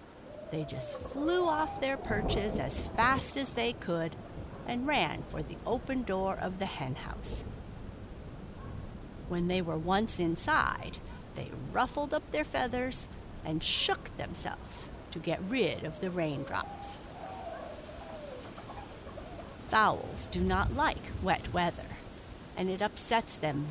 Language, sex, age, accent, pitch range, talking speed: English, female, 50-69, American, 155-215 Hz, 125 wpm